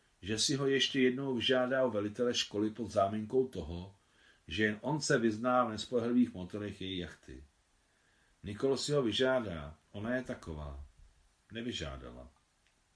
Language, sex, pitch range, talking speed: Czech, male, 90-130 Hz, 140 wpm